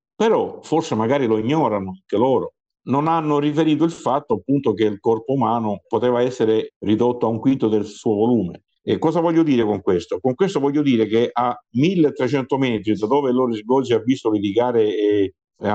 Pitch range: 105-135 Hz